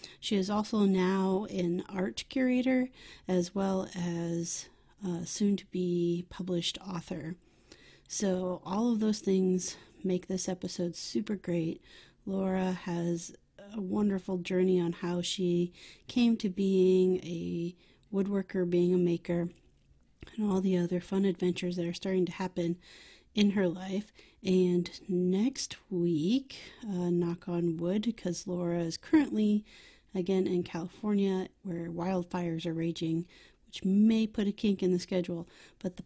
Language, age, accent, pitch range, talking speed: English, 30-49, American, 175-200 Hz, 135 wpm